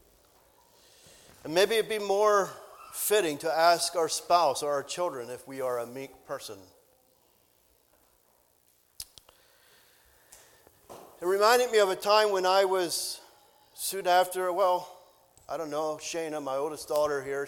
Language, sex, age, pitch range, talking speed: English, male, 40-59, 135-190 Hz, 135 wpm